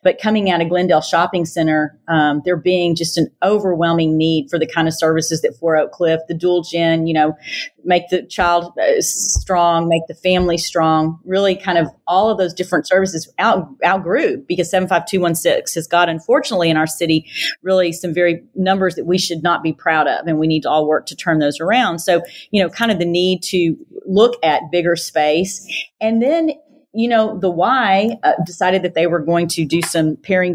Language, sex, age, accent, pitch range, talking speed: English, female, 40-59, American, 165-185 Hz, 200 wpm